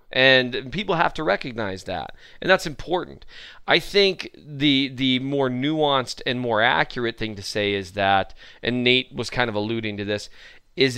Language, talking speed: English, 175 wpm